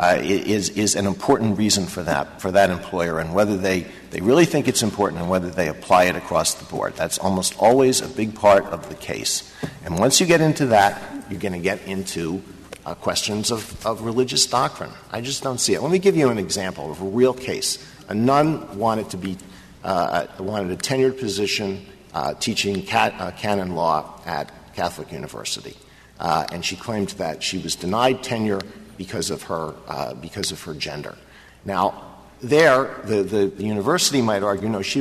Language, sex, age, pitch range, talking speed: English, male, 50-69, 95-130 Hz, 195 wpm